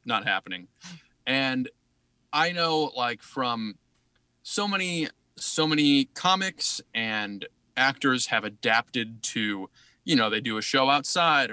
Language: English